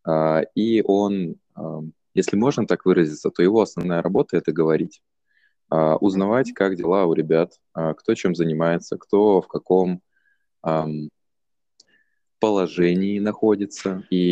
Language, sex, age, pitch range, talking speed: Russian, male, 20-39, 80-95 Hz, 110 wpm